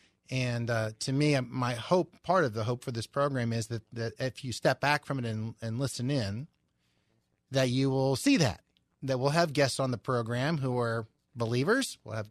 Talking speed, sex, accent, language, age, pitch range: 210 wpm, male, American, English, 30-49, 120-150 Hz